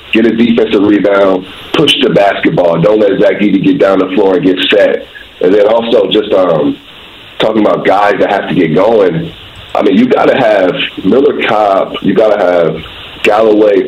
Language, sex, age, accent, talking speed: English, male, 40-59, American, 185 wpm